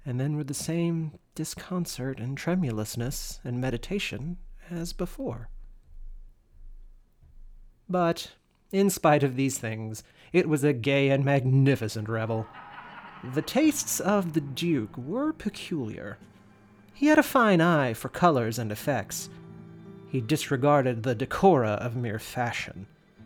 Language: English